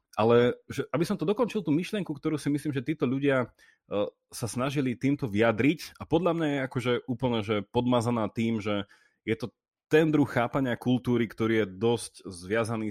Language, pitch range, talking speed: Slovak, 100-125 Hz, 175 wpm